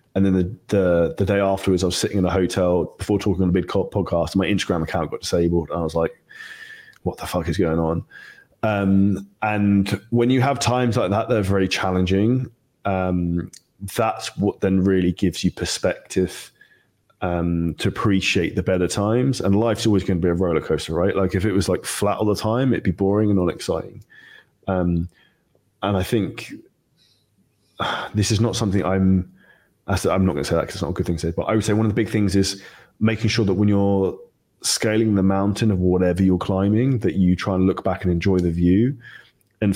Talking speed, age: 215 wpm, 20-39